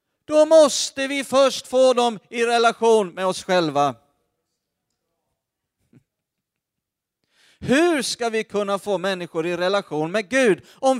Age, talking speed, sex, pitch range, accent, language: 40-59, 120 wpm, male, 175-255 Hz, native, Swedish